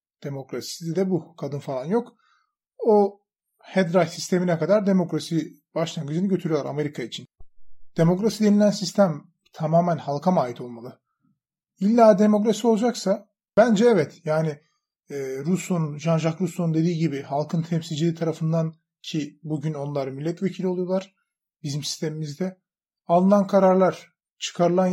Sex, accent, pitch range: male, native, 155-195 Hz